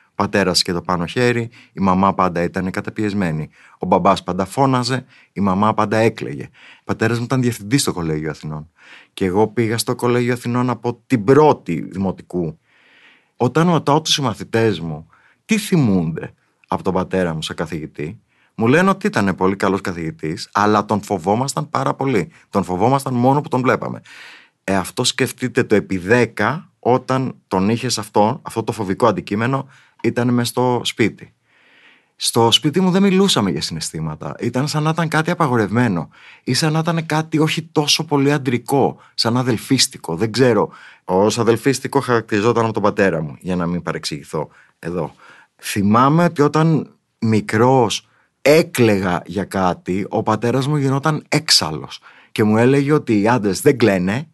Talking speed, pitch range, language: 160 wpm, 95-135 Hz, Greek